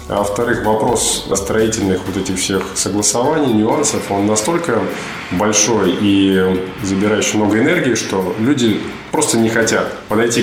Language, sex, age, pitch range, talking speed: Russian, male, 20-39, 100-130 Hz, 130 wpm